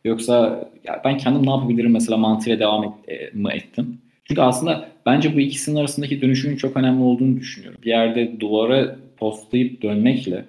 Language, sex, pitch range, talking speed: Turkish, male, 110-130 Hz, 165 wpm